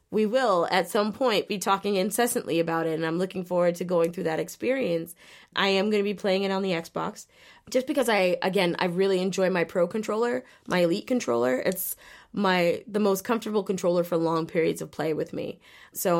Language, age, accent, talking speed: English, 20-39, American, 210 wpm